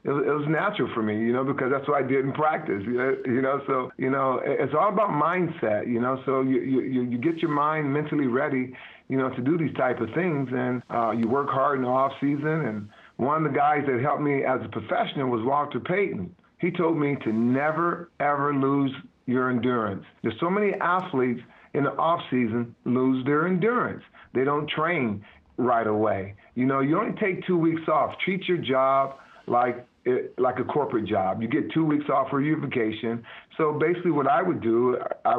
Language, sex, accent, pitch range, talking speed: English, male, American, 125-160 Hz, 200 wpm